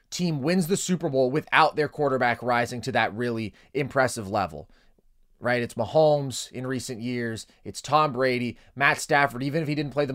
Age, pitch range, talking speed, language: 30-49, 120-155 Hz, 185 wpm, English